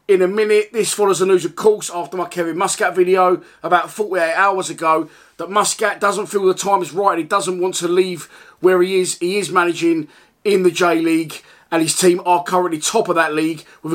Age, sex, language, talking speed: 30-49, male, English, 220 wpm